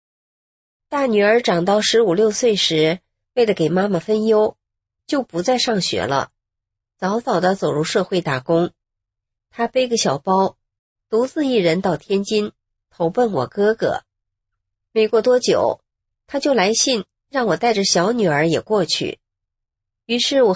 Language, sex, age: Chinese, female, 30-49